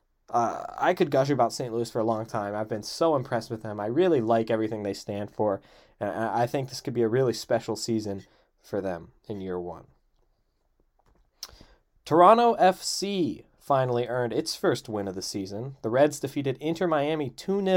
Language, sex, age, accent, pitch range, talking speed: English, male, 20-39, American, 110-140 Hz, 180 wpm